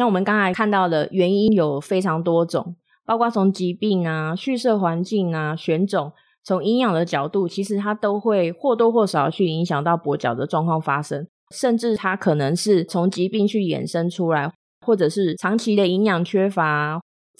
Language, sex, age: Chinese, female, 20-39